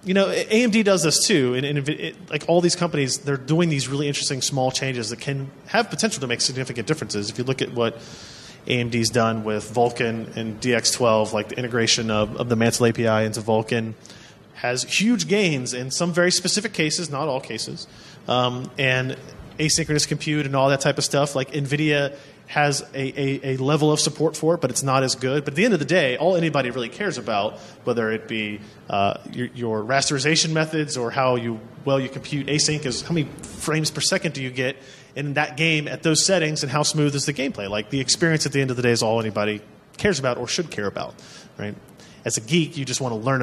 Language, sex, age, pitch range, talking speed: English, male, 30-49, 115-150 Hz, 220 wpm